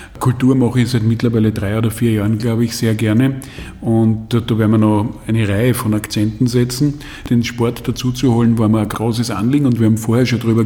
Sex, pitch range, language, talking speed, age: male, 115-135 Hz, German, 210 wpm, 50-69